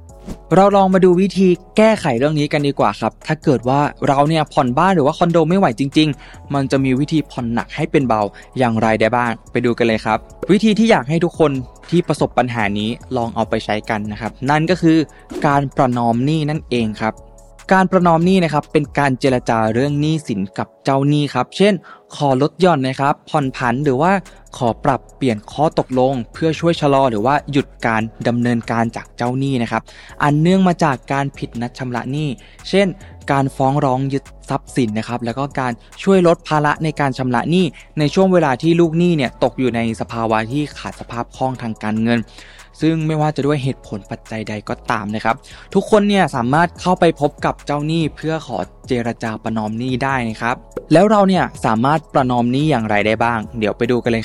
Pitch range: 115-155 Hz